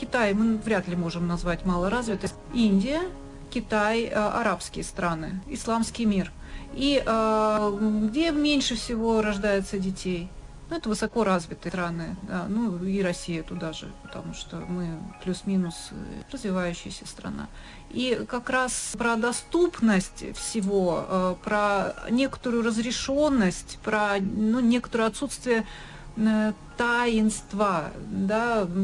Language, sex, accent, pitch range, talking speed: Russian, female, native, 190-230 Hz, 100 wpm